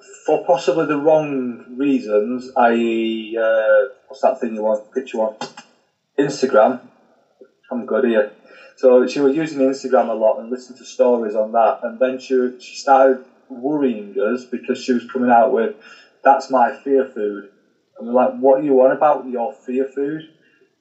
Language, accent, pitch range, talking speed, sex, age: English, British, 120-135 Hz, 170 wpm, male, 20-39